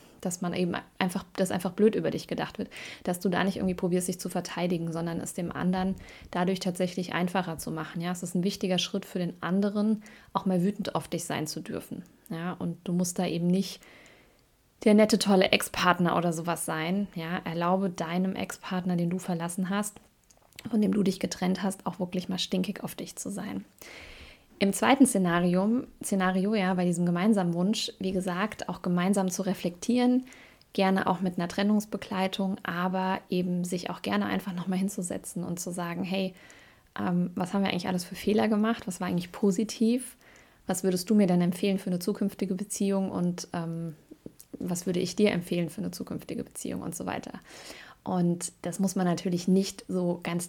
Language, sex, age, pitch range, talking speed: German, female, 20-39, 180-200 Hz, 190 wpm